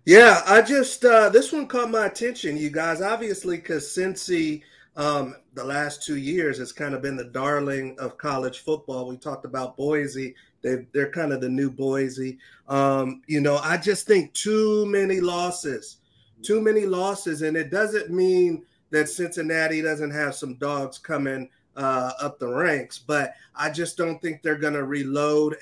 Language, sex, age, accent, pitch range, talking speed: English, male, 30-49, American, 145-165 Hz, 175 wpm